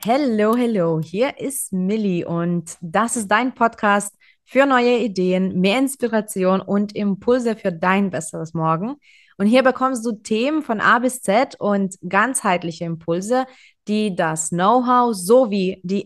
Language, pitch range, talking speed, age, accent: German, 200-255 Hz, 140 wpm, 20-39, German